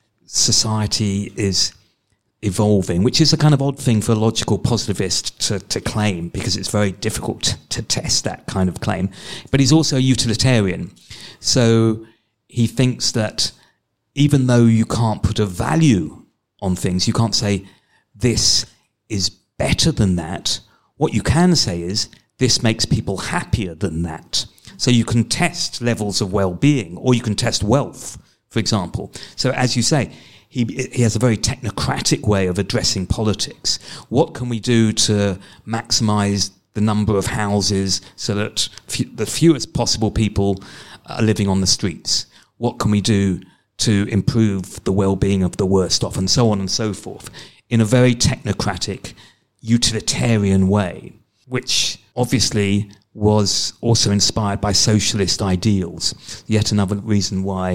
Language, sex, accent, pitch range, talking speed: English, male, British, 100-120 Hz, 155 wpm